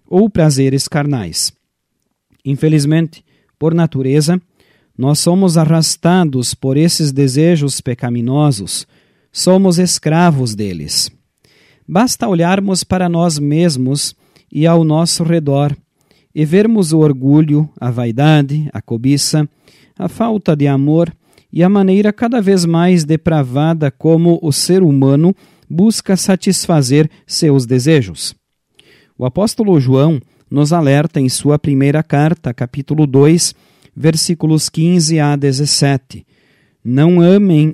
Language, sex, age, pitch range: Portuguese, male, 40-59, 140-175 Hz